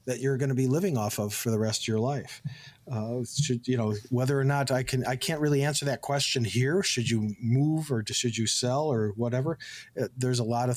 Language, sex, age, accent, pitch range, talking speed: English, male, 50-69, American, 120-140 Hz, 240 wpm